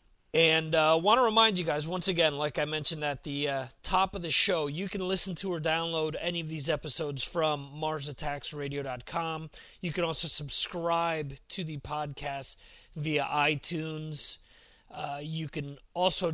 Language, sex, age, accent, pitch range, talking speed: English, male, 30-49, American, 140-170 Hz, 160 wpm